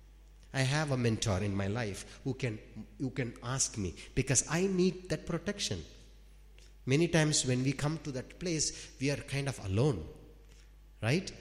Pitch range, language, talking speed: 110-145 Hz, English, 170 wpm